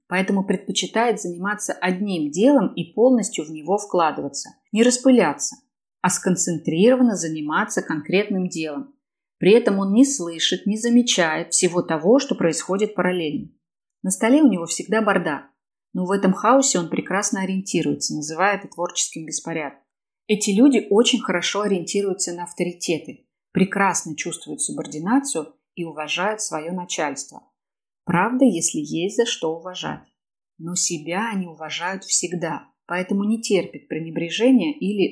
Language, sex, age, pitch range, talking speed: Russian, female, 30-49, 170-230 Hz, 130 wpm